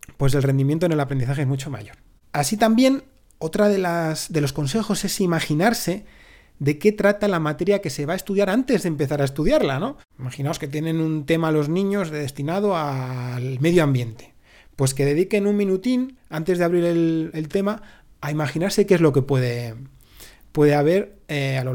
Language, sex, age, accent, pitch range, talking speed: Spanish, male, 30-49, Spanish, 135-175 Hz, 195 wpm